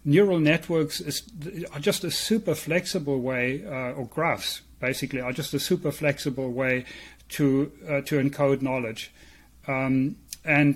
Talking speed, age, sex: 145 wpm, 40-59, male